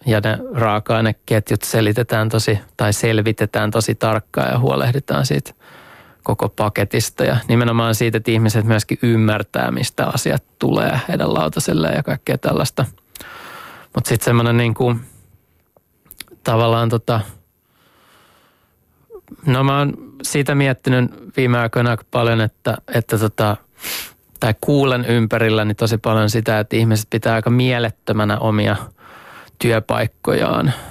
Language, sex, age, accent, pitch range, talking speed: Finnish, male, 20-39, native, 110-120 Hz, 120 wpm